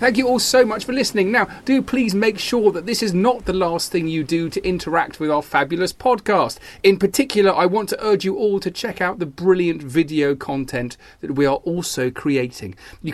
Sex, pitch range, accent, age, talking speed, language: male, 140-190 Hz, British, 40-59, 220 wpm, English